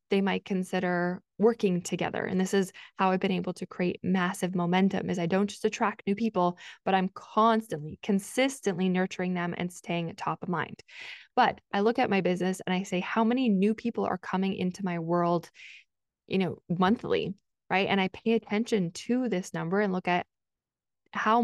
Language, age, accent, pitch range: English, 20-39, American, 185-210 Hz